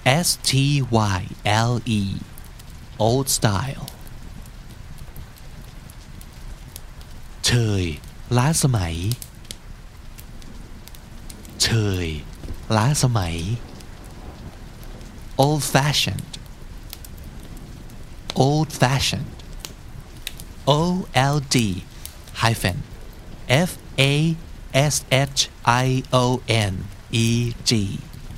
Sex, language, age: male, Thai, 50-69